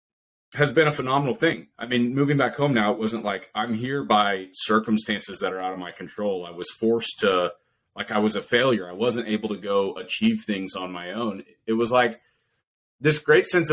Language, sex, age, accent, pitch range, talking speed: English, male, 30-49, American, 105-125 Hz, 215 wpm